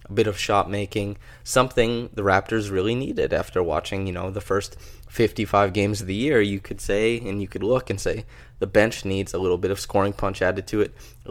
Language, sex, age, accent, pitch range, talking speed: English, male, 20-39, American, 95-110 Hz, 225 wpm